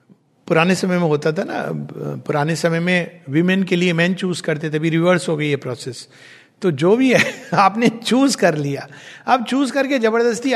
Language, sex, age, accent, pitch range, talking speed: Hindi, male, 60-79, native, 155-235 Hz, 195 wpm